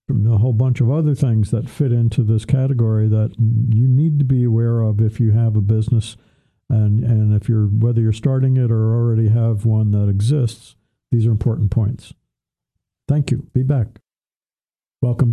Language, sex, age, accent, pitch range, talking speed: English, male, 50-69, American, 110-125 Hz, 185 wpm